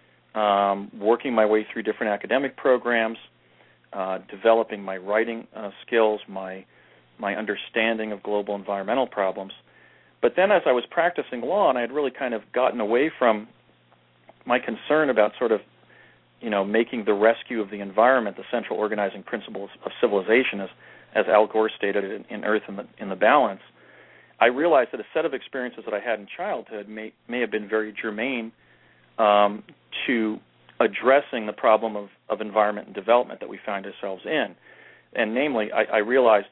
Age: 40-59